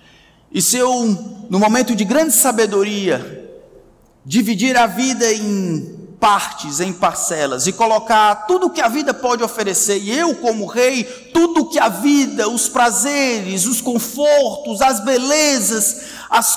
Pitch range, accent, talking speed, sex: 200-285 Hz, Brazilian, 140 wpm, male